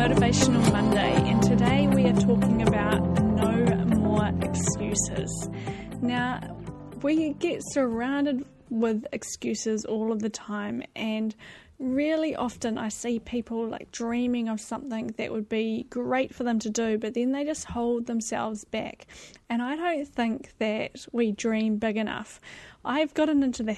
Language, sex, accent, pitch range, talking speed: English, female, Australian, 220-250 Hz, 150 wpm